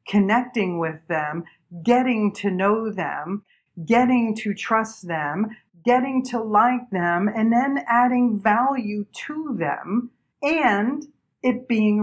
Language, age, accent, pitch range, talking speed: English, 50-69, American, 195-250 Hz, 120 wpm